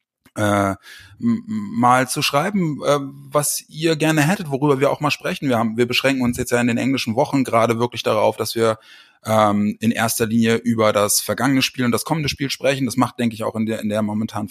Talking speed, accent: 210 wpm, German